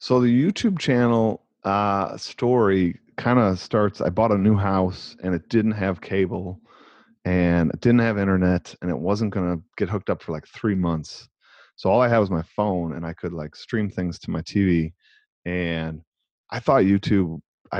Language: English